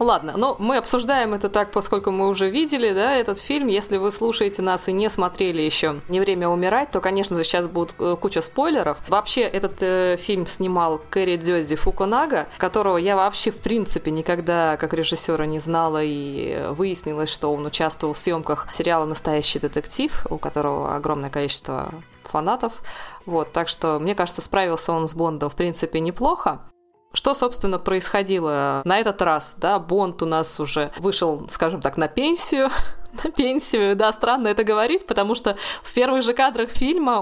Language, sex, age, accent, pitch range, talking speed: Russian, female, 20-39, native, 165-225 Hz, 170 wpm